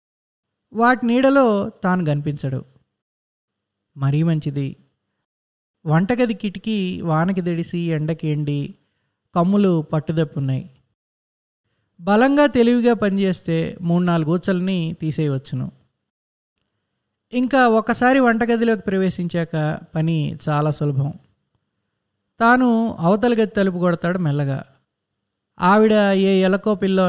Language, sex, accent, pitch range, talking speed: Telugu, male, native, 145-195 Hz, 80 wpm